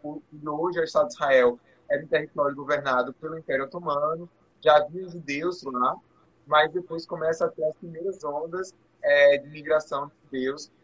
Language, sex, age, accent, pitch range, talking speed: Portuguese, male, 20-39, Brazilian, 135-165 Hz, 165 wpm